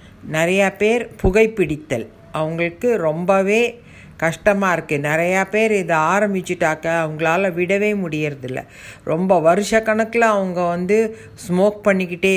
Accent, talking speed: native, 100 wpm